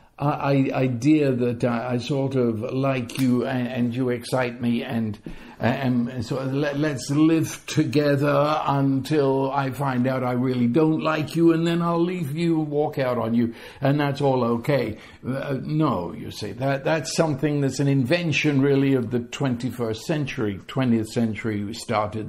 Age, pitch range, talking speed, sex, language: 60-79, 130-185 Hz, 175 wpm, male, English